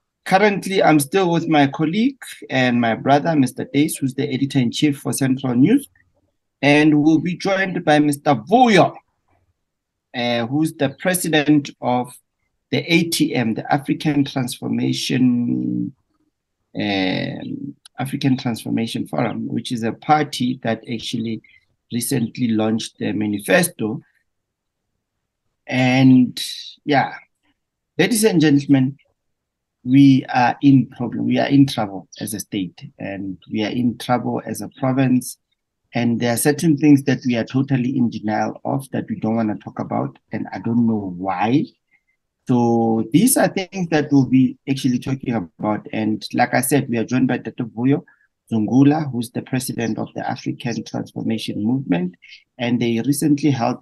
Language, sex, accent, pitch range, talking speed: English, male, South African, 115-145 Hz, 145 wpm